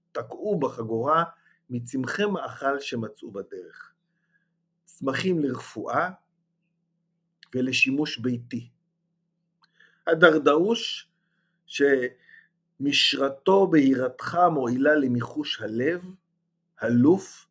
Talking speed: 60 wpm